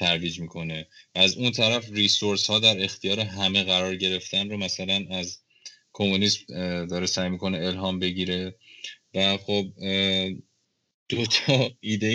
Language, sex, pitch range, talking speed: Persian, male, 90-110 Hz, 130 wpm